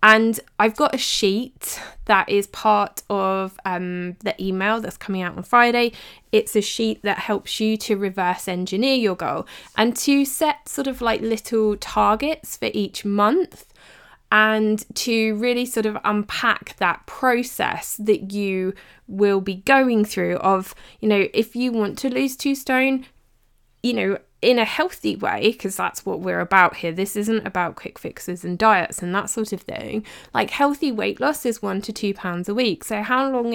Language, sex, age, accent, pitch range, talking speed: English, female, 20-39, British, 195-235 Hz, 180 wpm